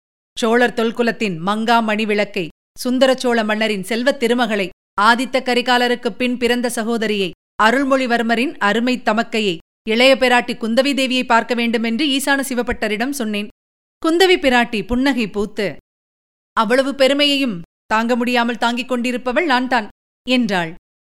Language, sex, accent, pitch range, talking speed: Tamil, female, native, 225-265 Hz, 100 wpm